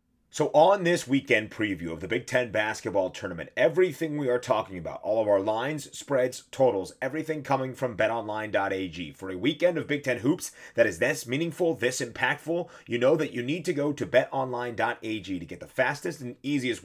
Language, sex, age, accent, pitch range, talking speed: English, male, 30-49, American, 115-150 Hz, 190 wpm